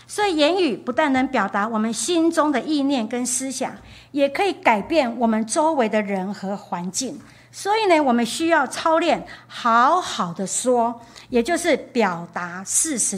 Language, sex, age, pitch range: Chinese, female, 50-69, 215-300 Hz